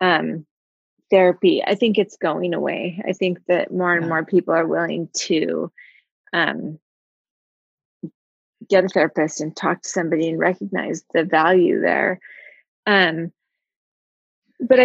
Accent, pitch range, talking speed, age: American, 180-220 Hz, 130 wpm, 30-49